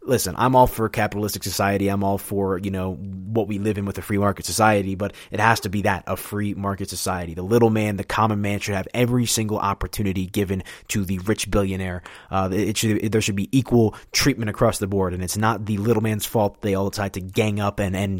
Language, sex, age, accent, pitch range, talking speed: English, male, 20-39, American, 95-115 Hz, 240 wpm